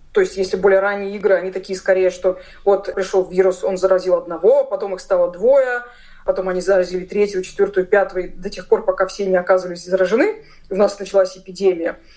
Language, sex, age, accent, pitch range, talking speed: Russian, female, 20-39, native, 185-220 Hz, 185 wpm